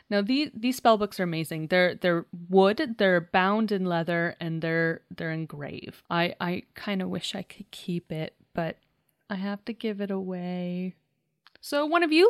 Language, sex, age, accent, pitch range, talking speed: English, female, 30-49, American, 190-260 Hz, 185 wpm